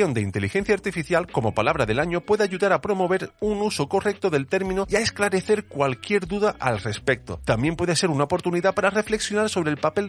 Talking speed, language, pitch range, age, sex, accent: 195 wpm, Spanish, 120-180 Hz, 40-59, male, Spanish